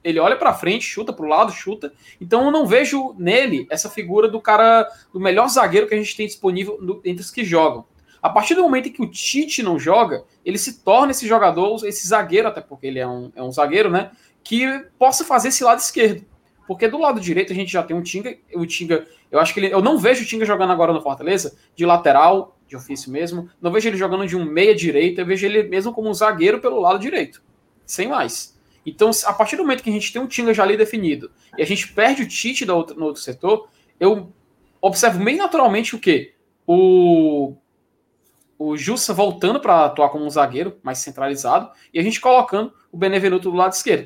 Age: 20-39